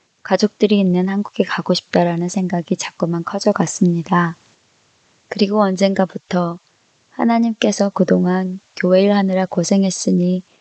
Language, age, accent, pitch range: Korean, 20-39, native, 175-200 Hz